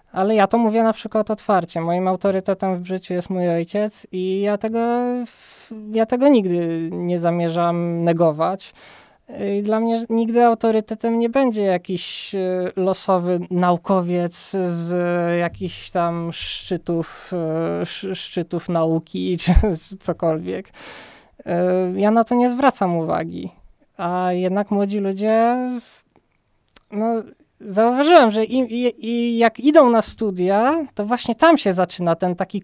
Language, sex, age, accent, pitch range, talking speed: Polish, male, 20-39, native, 185-240 Hz, 125 wpm